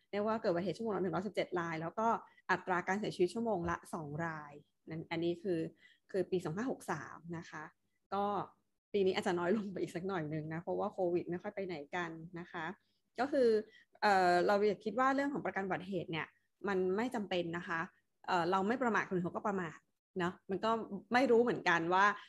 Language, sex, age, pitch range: Thai, female, 20-39, 175-210 Hz